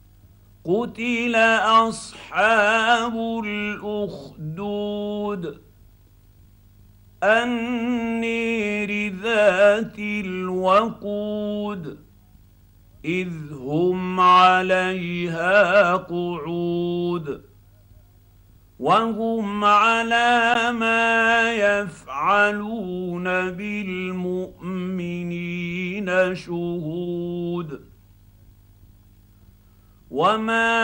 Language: Arabic